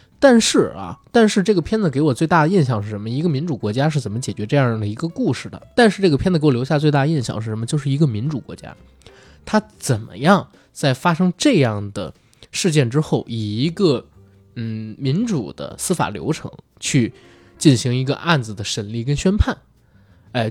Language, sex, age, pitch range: Chinese, male, 20-39, 110-155 Hz